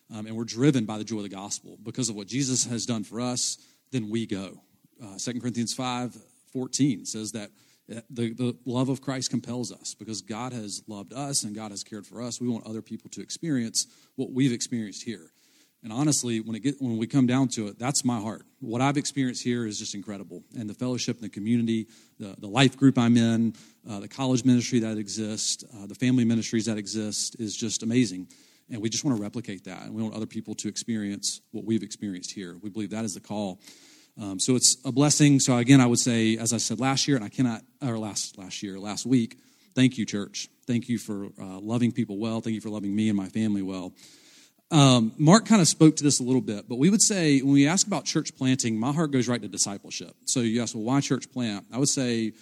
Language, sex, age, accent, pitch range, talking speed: English, male, 40-59, American, 110-130 Hz, 235 wpm